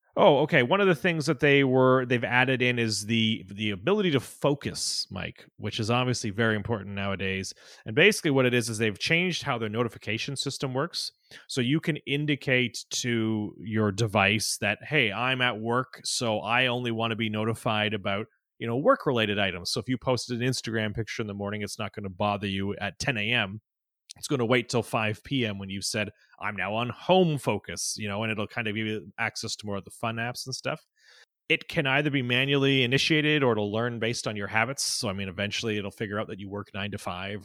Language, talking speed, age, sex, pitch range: English, 225 wpm, 30-49, male, 105-130 Hz